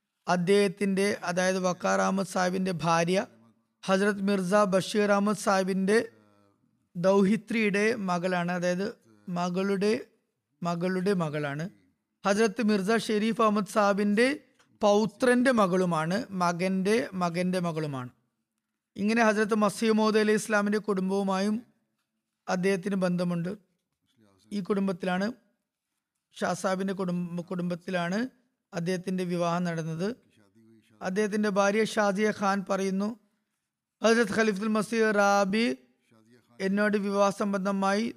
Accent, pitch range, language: native, 180-210 Hz, Malayalam